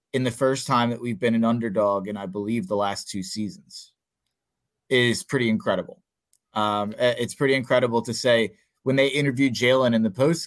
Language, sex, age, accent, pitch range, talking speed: English, male, 30-49, American, 125-175 Hz, 190 wpm